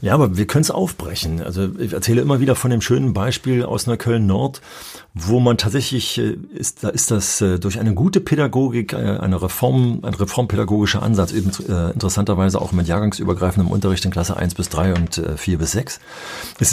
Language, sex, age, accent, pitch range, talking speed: German, male, 40-59, German, 95-125 Hz, 185 wpm